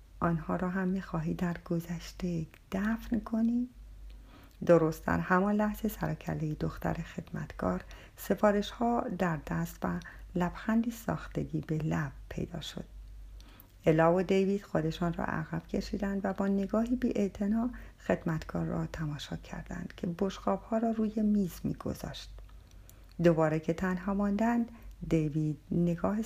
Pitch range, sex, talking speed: 160-215 Hz, female, 125 wpm